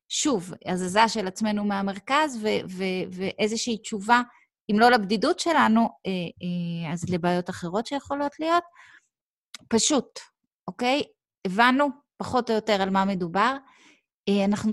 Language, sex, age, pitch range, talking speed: Hebrew, female, 30-49, 190-240 Hz, 120 wpm